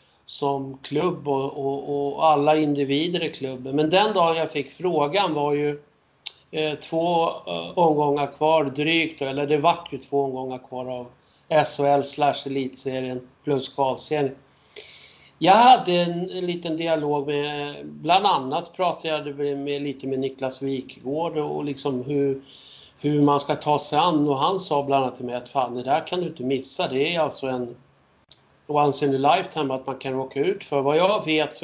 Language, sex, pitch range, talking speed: Swedish, male, 135-160 Hz, 175 wpm